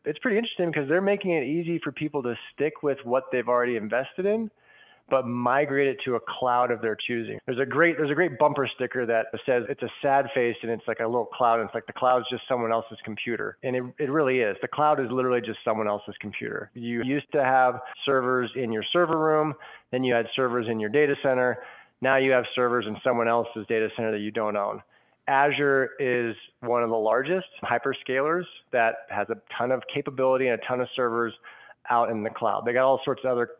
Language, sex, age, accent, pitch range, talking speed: English, male, 20-39, American, 115-135 Hz, 230 wpm